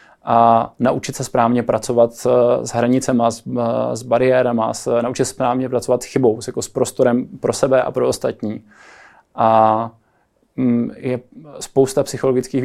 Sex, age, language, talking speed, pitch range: male, 20-39, Czech, 130 wpm, 115-125 Hz